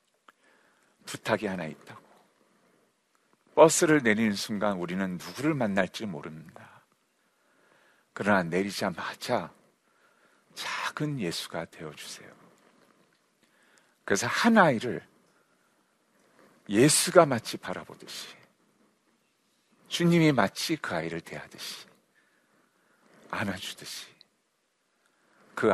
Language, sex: Korean, male